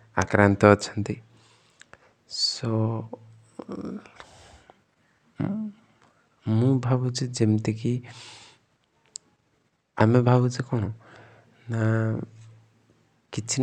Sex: male